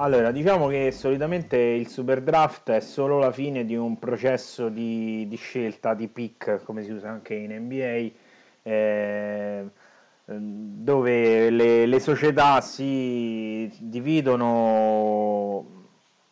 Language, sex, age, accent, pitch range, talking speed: Italian, male, 30-49, native, 110-130 Hz, 120 wpm